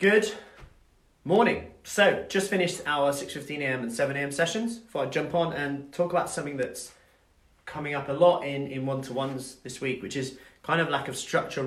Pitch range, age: 120-165 Hz, 30-49